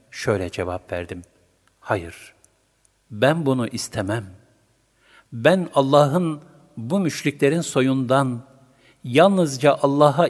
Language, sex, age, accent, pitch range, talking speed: Turkish, male, 60-79, native, 105-140 Hz, 80 wpm